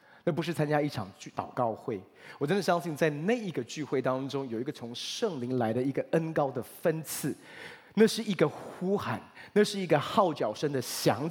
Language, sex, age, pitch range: Chinese, male, 30-49, 115-155 Hz